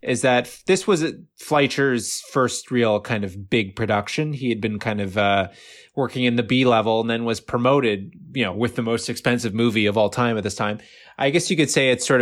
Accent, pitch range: American, 105-125 Hz